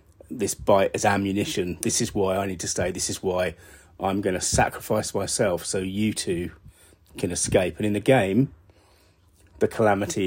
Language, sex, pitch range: English, male, 85-105 Hz